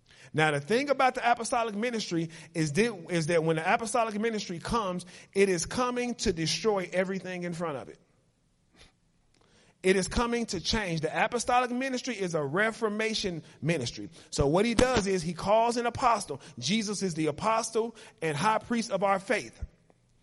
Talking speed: 165 wpm